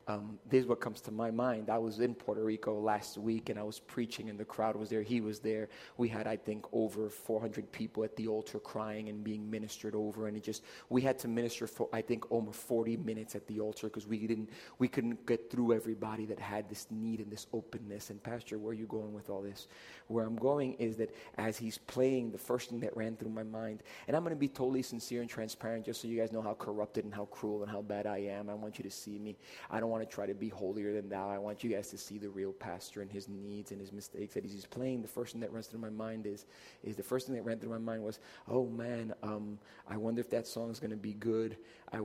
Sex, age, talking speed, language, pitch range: male, 30-49, 270 wpm, English, 105-115 Hz